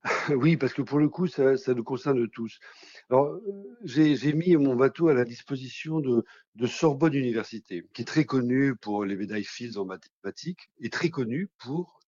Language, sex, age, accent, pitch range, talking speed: French, male, 50-69, French, 110-150 Hz, 190 wpm